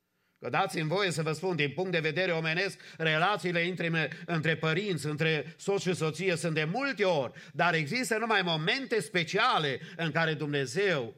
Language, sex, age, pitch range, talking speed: English, male, 50-69, 135-175 Hz, 165 wpm